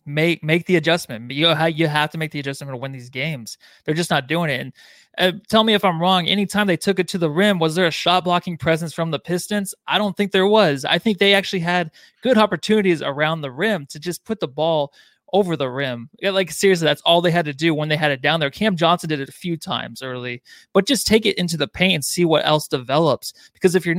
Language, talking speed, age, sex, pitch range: English, 255 wpm, 20-39, male, 155-190 Hz